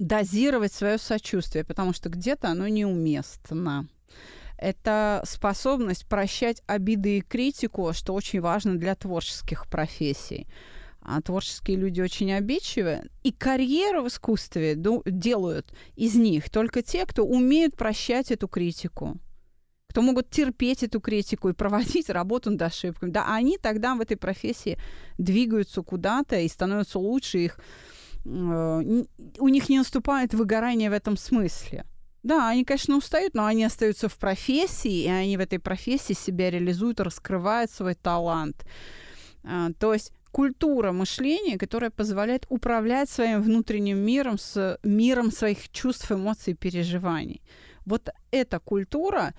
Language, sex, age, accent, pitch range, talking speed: Russian, female, 30-49, native, 185-245 Hz, 130 wpm